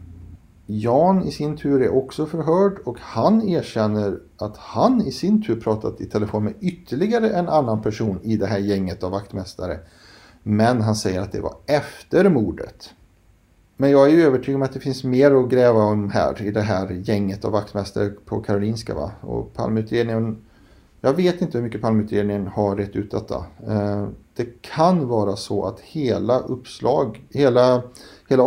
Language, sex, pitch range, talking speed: Swedish, male, 100-125 Hz, 170 wpm